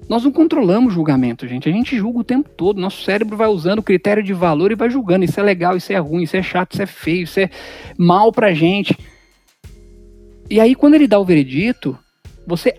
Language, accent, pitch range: Portuguese, Brazilian, 145-215 Hz